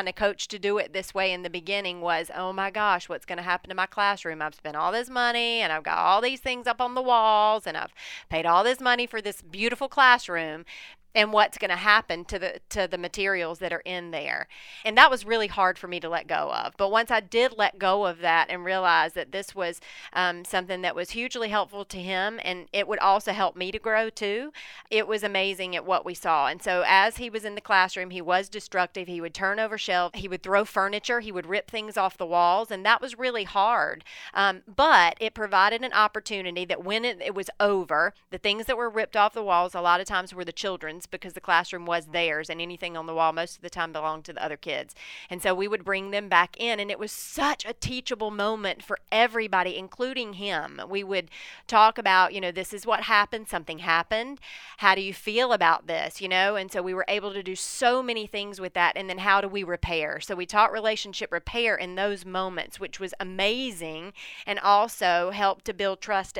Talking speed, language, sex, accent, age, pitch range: 235 wpm, English, female, American, 30-49, 180-220 Hz